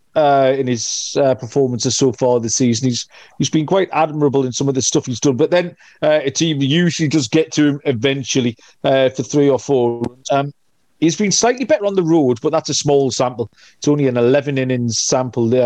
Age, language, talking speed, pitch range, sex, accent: 40-59, English, 215 wpm, 130-160 Hz, male, British